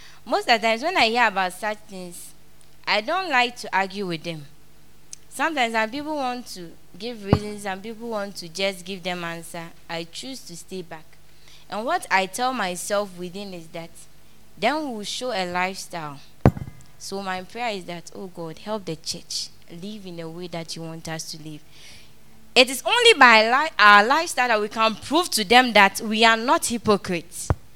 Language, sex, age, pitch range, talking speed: English, female, 20-39, 175-235 Hz, 190 wpm